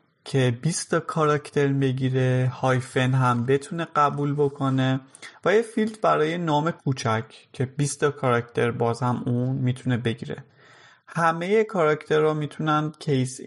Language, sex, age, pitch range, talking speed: Persian, male, 30-49, 125-150 Hz, 120 wpm